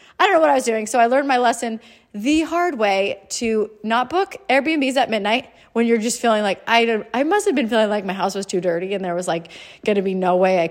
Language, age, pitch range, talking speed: English, 30-49, 185-240 Hz, 270 wpm